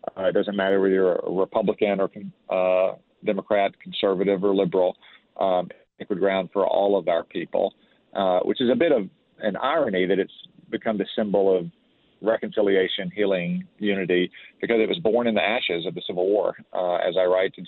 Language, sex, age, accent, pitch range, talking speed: English, male, 40-59, American, 90-100 Hz, 190 wpm